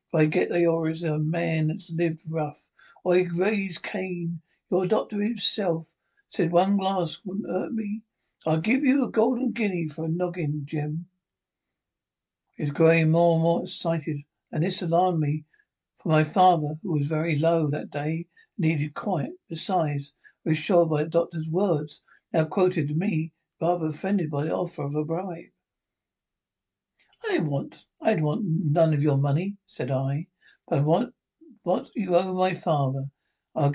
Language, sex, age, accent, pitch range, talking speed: English, male, 60-79, British, 155-195 Hz, 160 wpm